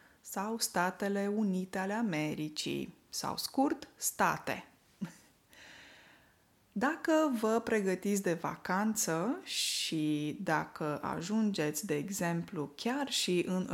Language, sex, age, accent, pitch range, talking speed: Romanian, female, 20-39, native, 180-245 Hz, 90 wpm